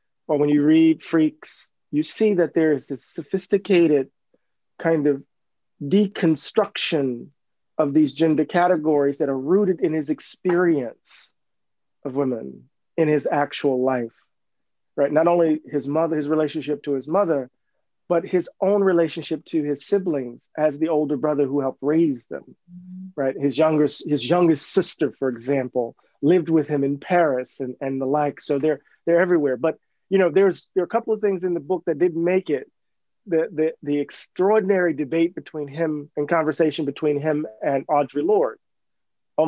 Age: 40-59